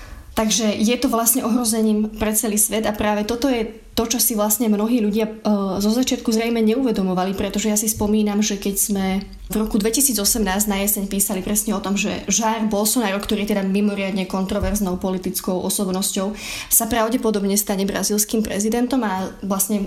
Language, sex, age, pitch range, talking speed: Slovak, female, 20-39, 195-220 Hz, 165 wpm